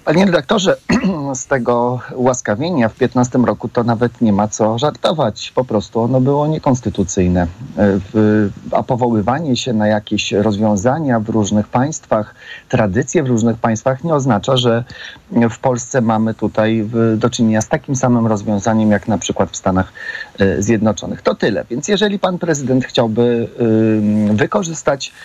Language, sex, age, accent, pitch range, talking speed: Polish, male, 40-59, native, 110-140 Hz, 140 wpm